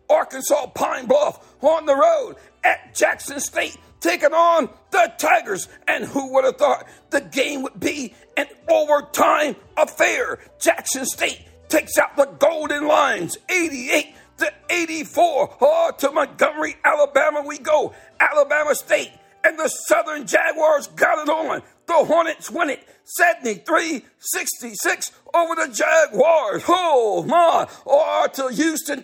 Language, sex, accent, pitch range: English, male, American, 285-325 Hz